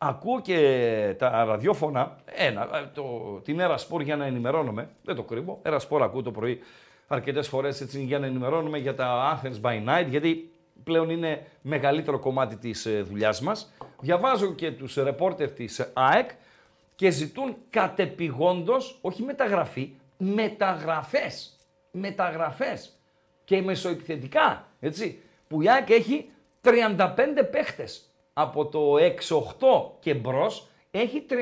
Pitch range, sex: 150-220 Hz, male